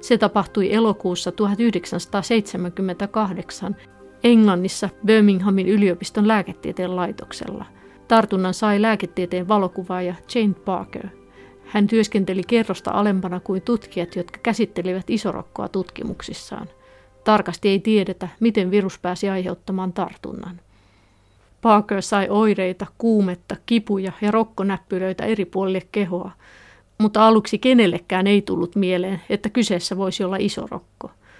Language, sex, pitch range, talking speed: Finnish, female, 185-210 Hz, 105 wpm